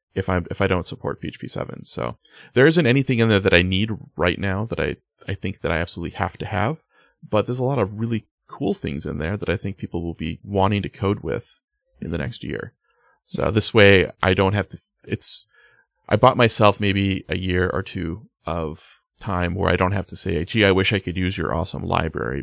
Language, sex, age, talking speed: English, male, 30-49, 230 wpm